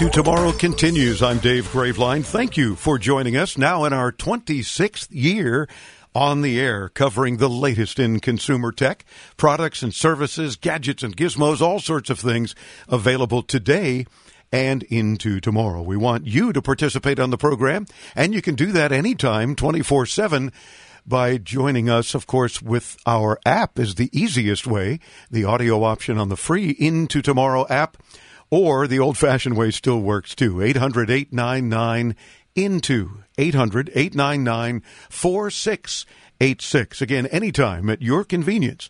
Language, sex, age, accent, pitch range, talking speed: English, male, 50-69, American, 120-150 Hz, 140 wpm